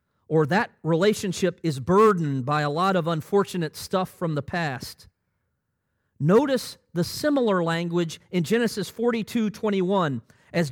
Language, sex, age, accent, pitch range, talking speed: English, male, 40-59, American, 130-200 Hz, 130 wpm